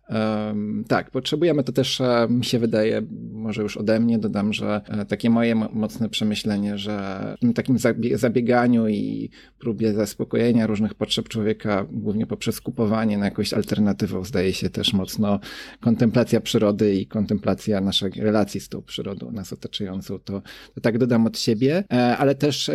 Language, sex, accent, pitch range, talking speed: Polish, male, native, 105-120 Hz, 150 wpm